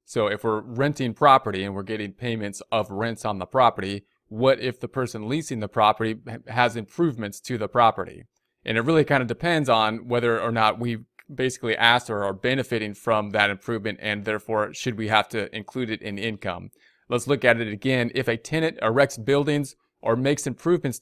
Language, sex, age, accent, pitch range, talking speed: English, male, 30-49, American, 110-135 Hz, 195 wpm